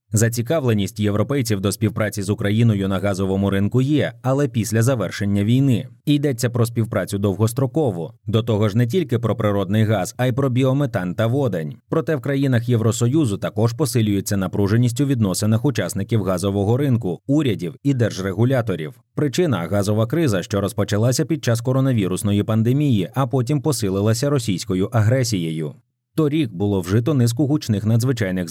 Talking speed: 140 wpm